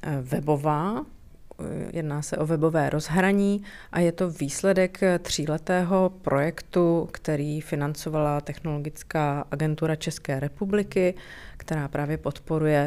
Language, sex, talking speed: Slovak, female, 100 wpm